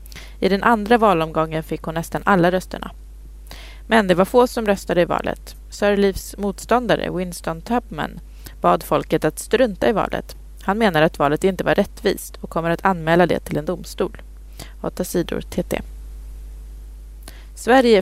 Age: 20-39